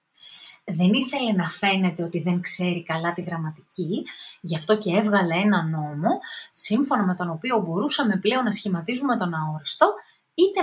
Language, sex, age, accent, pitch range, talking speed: Greek, female, 30-49, native, 180-255 Hz, 150 wpm